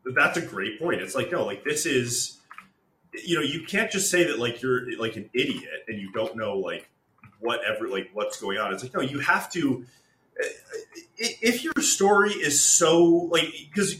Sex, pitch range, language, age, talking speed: male, 120-190 Hz, English, 30-49, 195 wpm